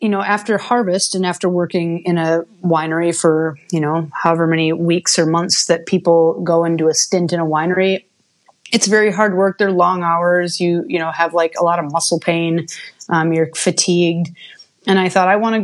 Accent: American